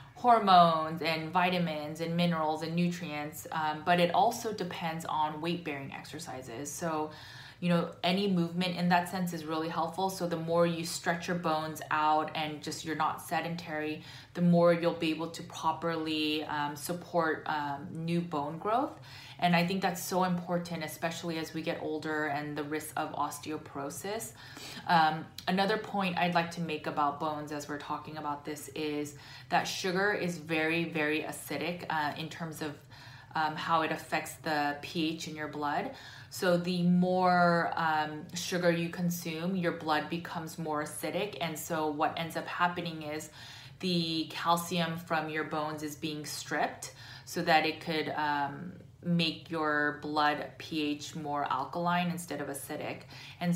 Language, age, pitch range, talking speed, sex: English, 20-39, 150-170 Hz, 160 wpm, female